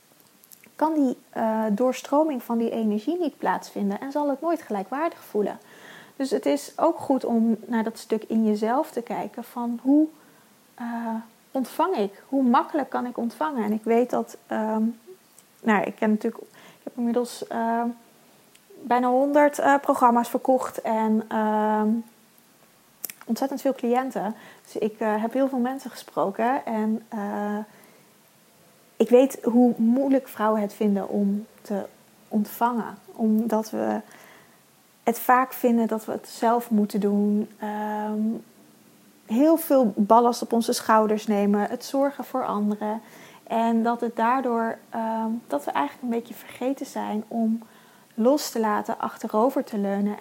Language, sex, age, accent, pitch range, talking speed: Dutch, female, 30-49, Dutch, 215-255 Hz, 145 wpm